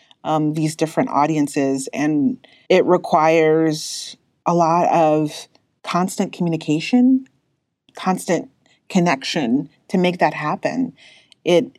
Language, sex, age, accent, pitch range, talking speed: English, female, 30-49, American, 155-200 Hz, 95 wpm